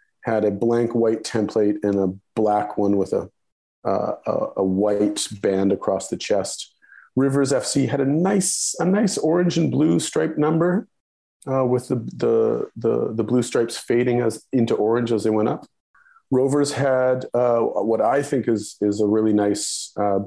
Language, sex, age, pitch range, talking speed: English, male, 40-59, 105-135 Hz, 175 wpm